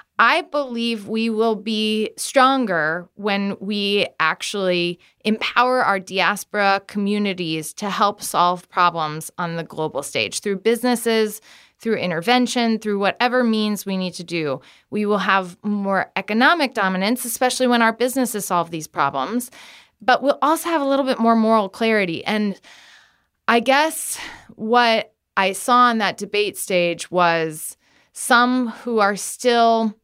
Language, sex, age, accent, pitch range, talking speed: English, female, 20-39, American, 180-240 Hz, 140 wpm